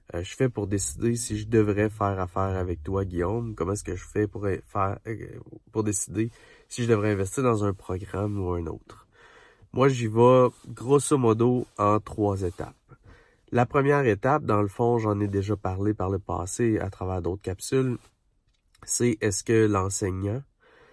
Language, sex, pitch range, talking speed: French, male, 95-115 Hz, 170 wpm